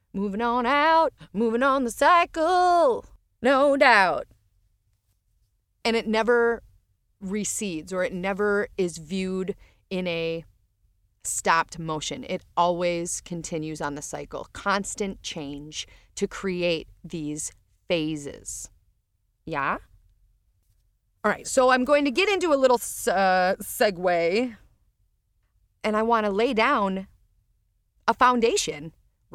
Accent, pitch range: American, 145-230 Hz